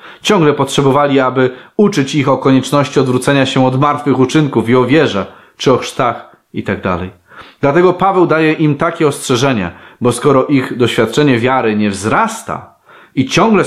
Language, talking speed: Polish, 150 wpm